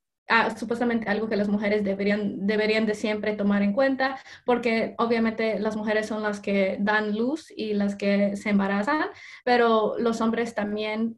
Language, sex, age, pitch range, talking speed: English, female, 20-39, 205-230 Hz, 165 wpm